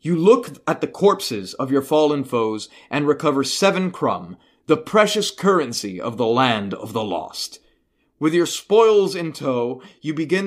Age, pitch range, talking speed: 30-49, 120-190 Hz, 165 wpm